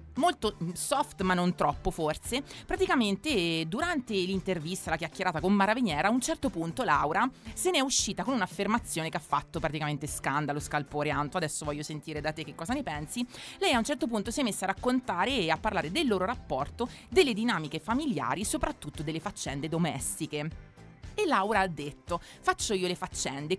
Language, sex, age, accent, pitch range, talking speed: Italian, female, 30-49, native, 160-230 Hz, 180 wpm